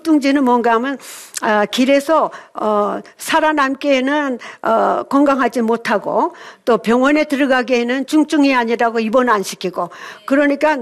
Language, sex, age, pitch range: Korean, female, 60-79, 220-275 Hz